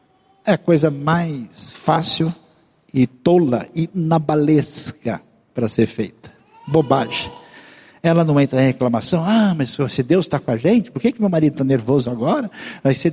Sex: male